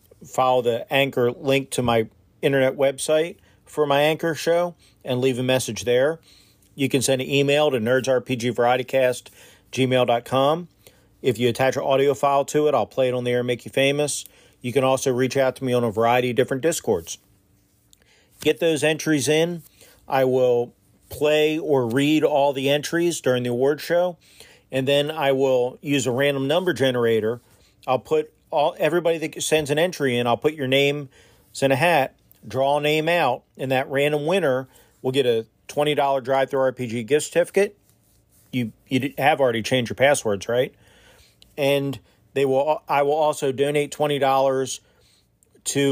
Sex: male